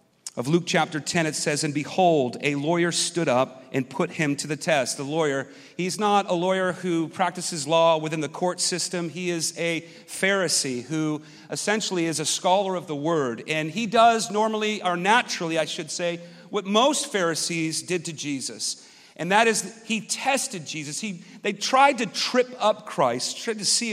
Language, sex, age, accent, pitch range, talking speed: English, male, 40-59, American, 165-225 Hz, 185 wpm